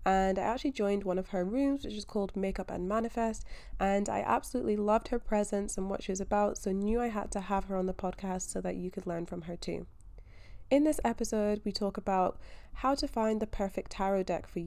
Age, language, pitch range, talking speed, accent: 20-39, English, 180-225 Hz, 235 wpm, British